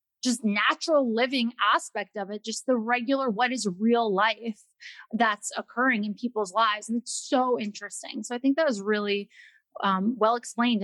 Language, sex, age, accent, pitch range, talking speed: English, female, 30-49, American, 210-265 Hz, 170 wpm